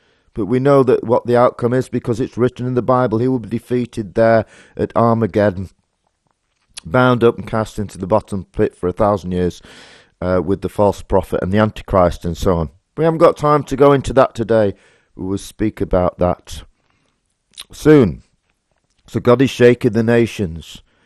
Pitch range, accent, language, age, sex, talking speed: 100-125 Hz, British, English, 40-59, male, 185 wpm